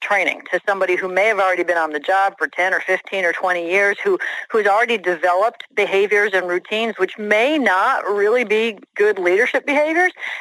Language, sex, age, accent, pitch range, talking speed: English, female, 50-69, American, 170-225 Hz, 190 wpm